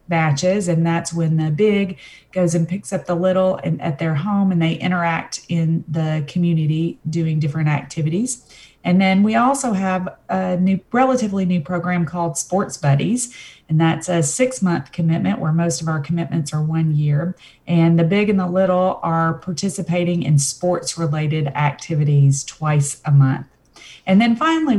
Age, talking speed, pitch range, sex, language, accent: 30-49, 165 wpm, 150-180 Hz, female, English, American